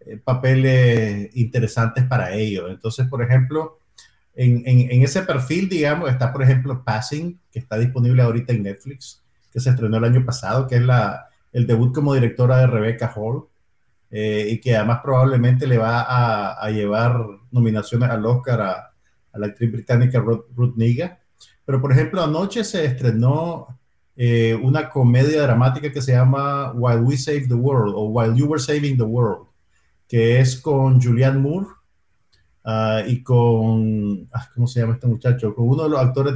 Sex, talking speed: male, 170 wpm